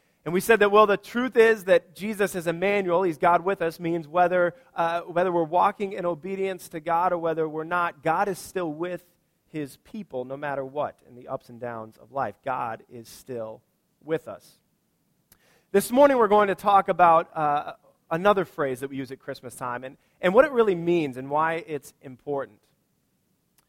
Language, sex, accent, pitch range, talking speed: English, male, American, 150-190 Hz, 195 wpm